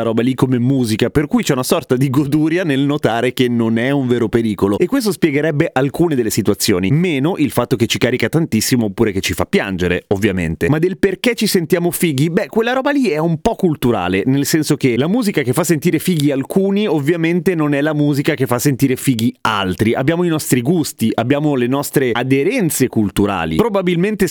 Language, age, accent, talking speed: Italian, 30-49, native, 200 wpm